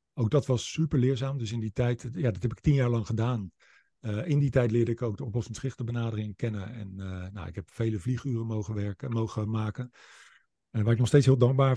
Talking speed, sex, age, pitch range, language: 230 wpm, male, 50-69, 110-135 Hz, Dutch